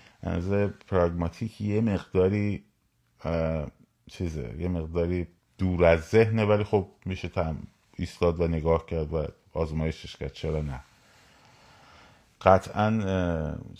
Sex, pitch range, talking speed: male, 80-95 Hz, 100 wpm